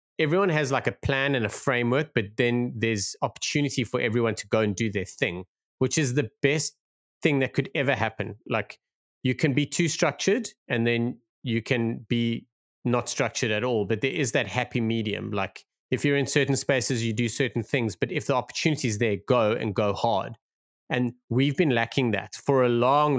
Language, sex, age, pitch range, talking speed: English, male, 30-49, 110-135 Hz, 200 wpm